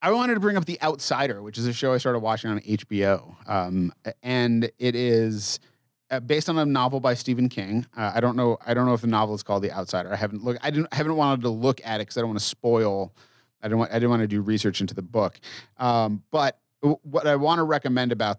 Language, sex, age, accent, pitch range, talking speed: English, male, 30-49, American, 105-130 Hz, 260 wpm